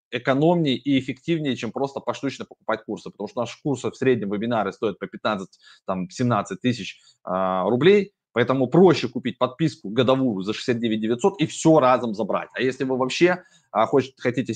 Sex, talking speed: male, 165 wpm